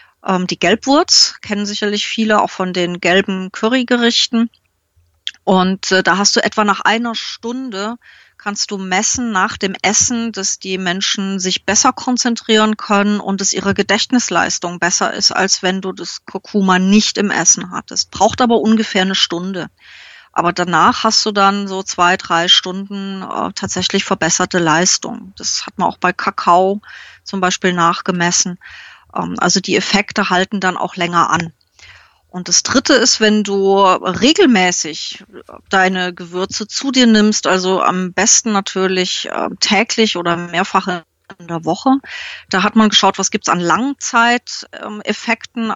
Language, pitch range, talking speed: German, 180-215 Hz, 145 wpm